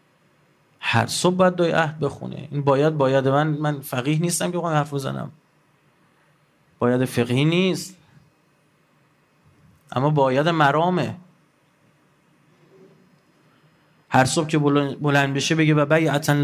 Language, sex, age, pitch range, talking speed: Persian, male, 30-49, 130-155 Hz, 110 wpm